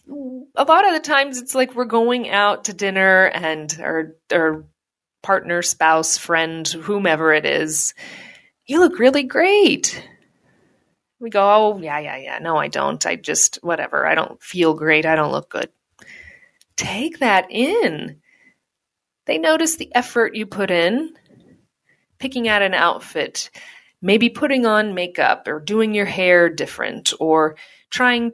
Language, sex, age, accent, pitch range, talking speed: English, female, 30-49, American, 175-255 Hz, 150 wpm